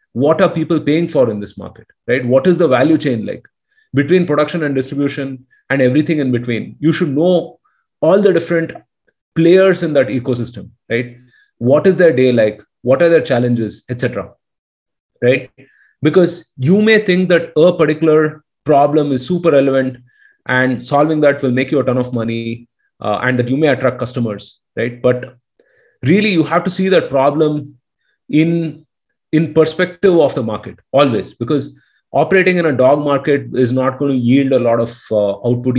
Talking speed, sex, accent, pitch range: 180 wpm, male, native, 125-160 Hz